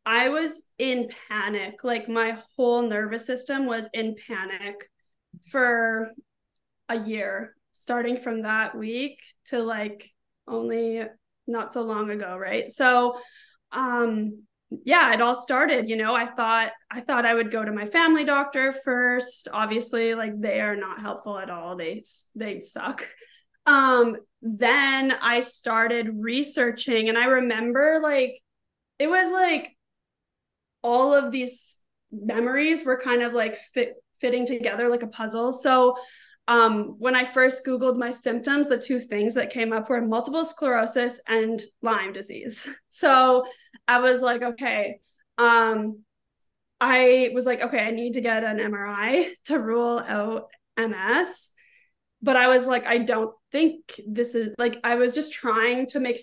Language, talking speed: English, 150 wpm